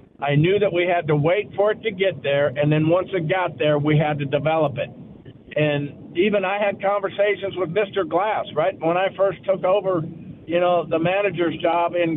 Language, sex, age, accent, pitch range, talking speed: English, male, 50-69, American, 160-195 Hz, 210 wpm